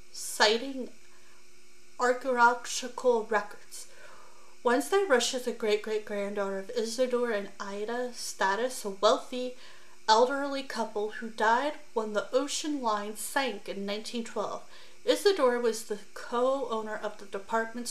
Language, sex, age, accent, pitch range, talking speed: English, female, 30-49, American, 215-255 Hz, 110 wpm